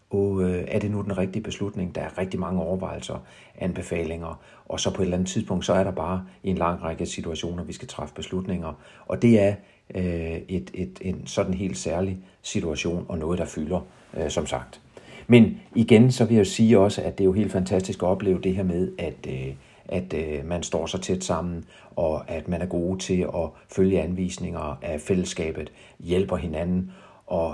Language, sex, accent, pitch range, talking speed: Danish, male, native, 85-100 Hz, 190 wpm